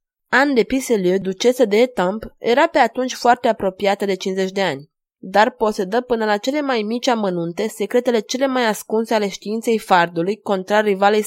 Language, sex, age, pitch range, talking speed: Romanian, female, 20-39, 185-230 Hz, 170 wpm